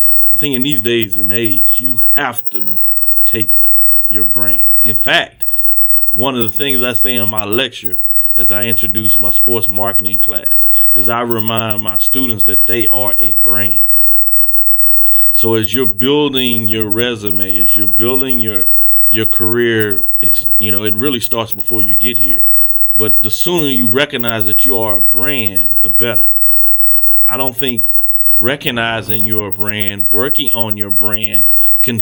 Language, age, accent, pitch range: English, 30-49, American, 105-120 Hz